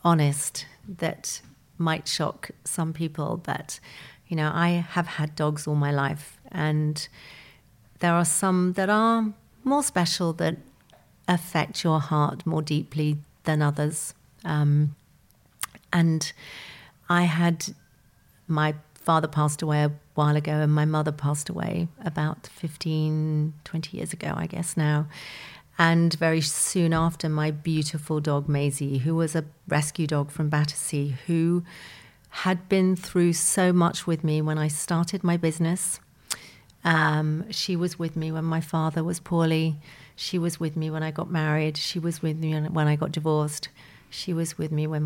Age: 50-69